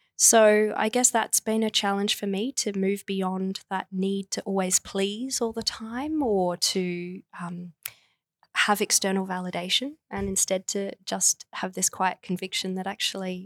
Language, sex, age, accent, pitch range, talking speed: English, female, 20-39, Australian, 180-205 Hz, 160 wpm